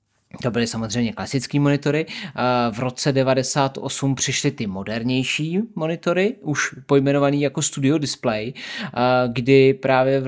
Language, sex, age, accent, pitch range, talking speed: Czech, male, 20-39, native, 120-140 Hz, 115 wpm